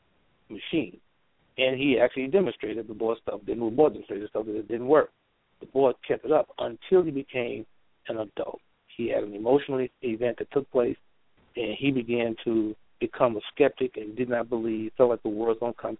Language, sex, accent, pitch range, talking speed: English, male, American, 110-130 Hz, 205 wpm